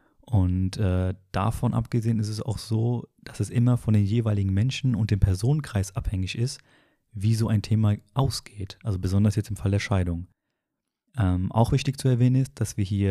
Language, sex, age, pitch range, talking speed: German, male, 30-49, 100-115 Hz, 190 wpm